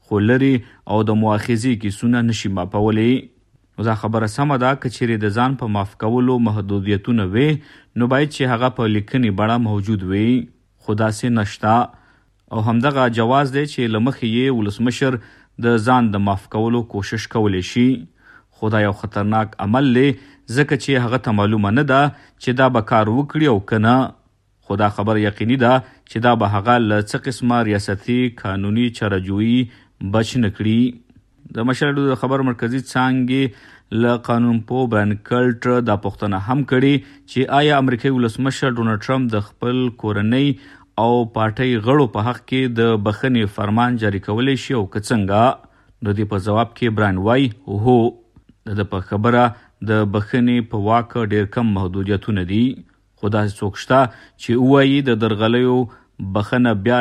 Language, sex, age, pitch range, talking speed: Urdu, male, 50-69, 105-125 Hz, 150 wpm